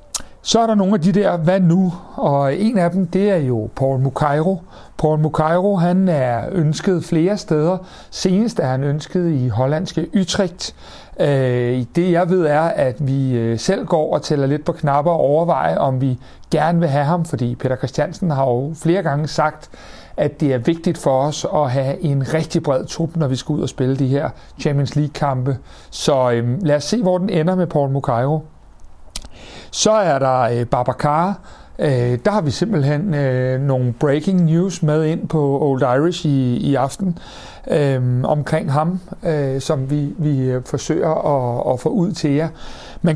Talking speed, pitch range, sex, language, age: 180 wpm, 140-175 Hz, male, Danish, 60-79